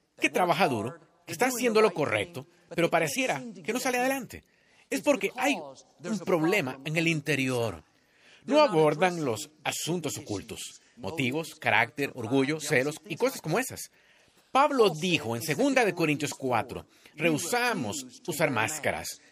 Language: Spanish